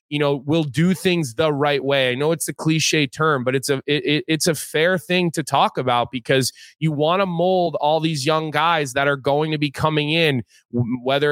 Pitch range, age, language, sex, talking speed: 135-155 Hz, 20-39, English, male, 215 wpm